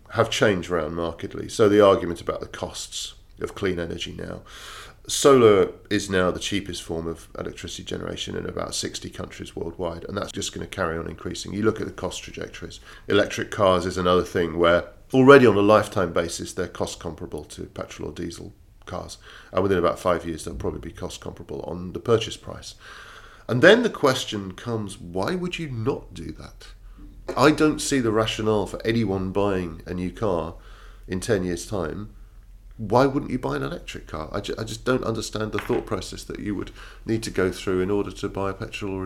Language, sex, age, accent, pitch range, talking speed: English, male, 40-59, British, 90-115 Hz, 200 wpm